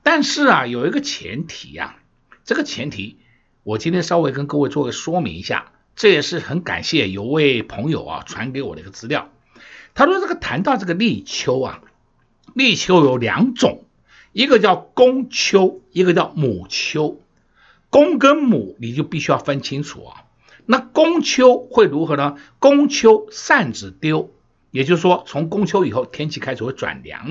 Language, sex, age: Chinese, male, 60-79